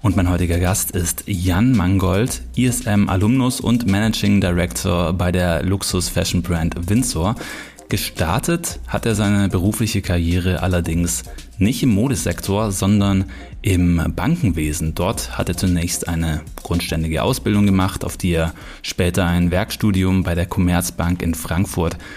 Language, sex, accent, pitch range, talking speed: German, male, German, 90-105 Hz, 125 wpm